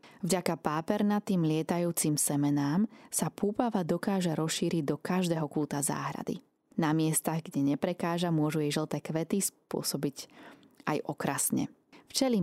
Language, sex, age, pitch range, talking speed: Slovak, female, 20-39, 150-180 Hz, 115 wpm